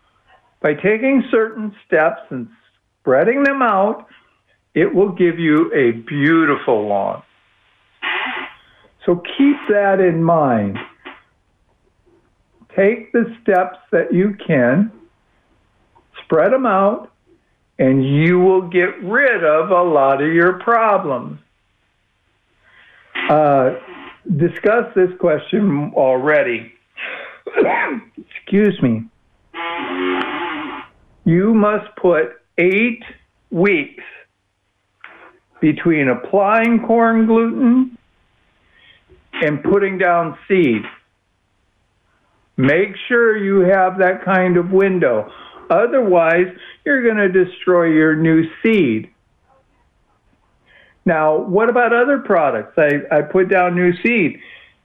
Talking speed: 95 wpm